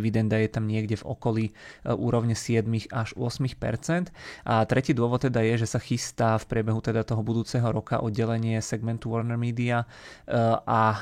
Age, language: 20-39, Czech